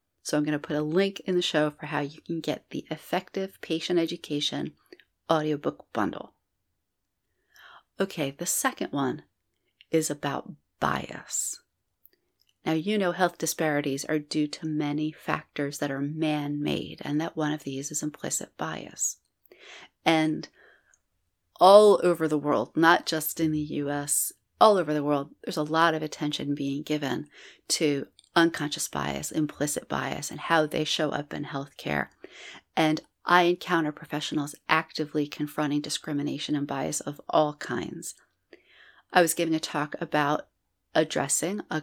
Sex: female